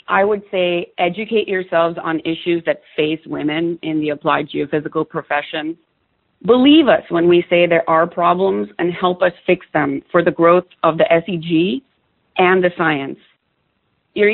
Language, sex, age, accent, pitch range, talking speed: English, female, 40-59, American, 165-200 Hz, 160 wpm